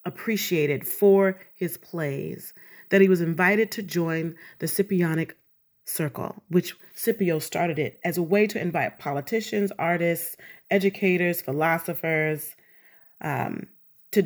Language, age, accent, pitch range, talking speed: English, 30-49, American, 155-195 Hz, 120 wpm